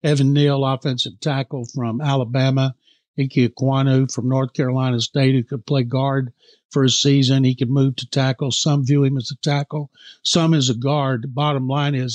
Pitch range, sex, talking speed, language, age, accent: 135-160 Hz, male, 190 wpm, English, 60-79, American